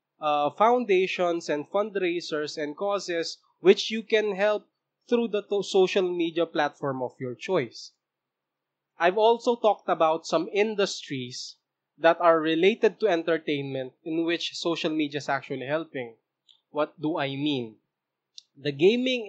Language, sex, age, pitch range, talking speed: English, male, 20-39, 145-190 Hz, 130 wpm